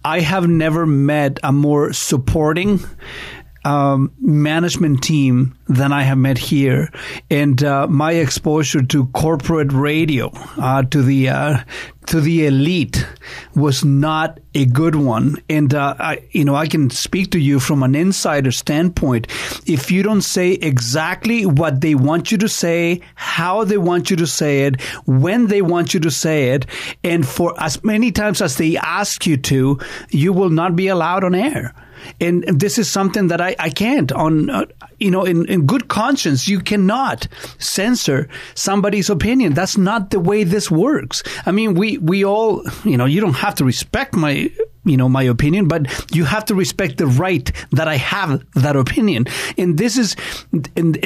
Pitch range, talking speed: 140-185 Hz, 175 wpm